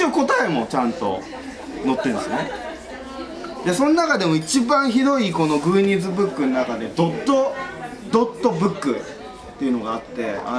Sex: male